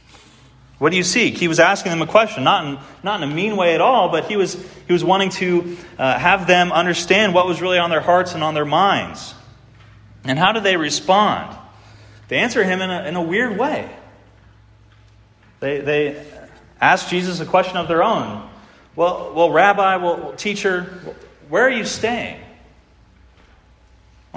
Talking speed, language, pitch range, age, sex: 180 wpm, English, 130-185 Hz, 30-49, male